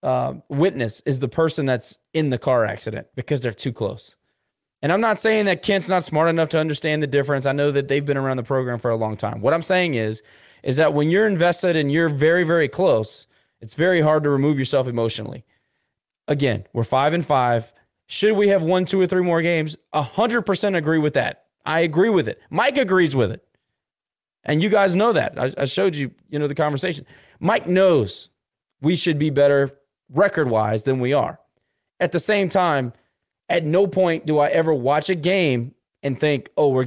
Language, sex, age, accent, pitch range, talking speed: English, male, 20-39, American, 135-180 Hz, 210 wpm